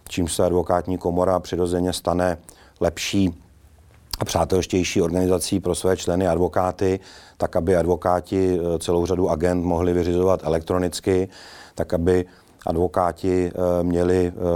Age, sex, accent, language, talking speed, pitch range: 30-49, male, native, Czech, 110 wpm, 90-95 Hz